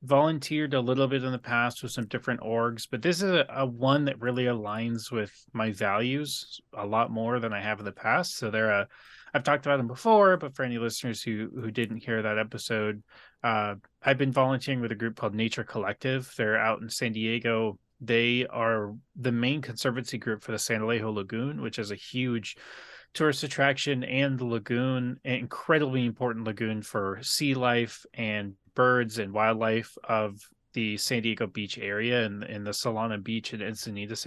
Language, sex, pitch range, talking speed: English, male, 110-130 Hz, 190 wpm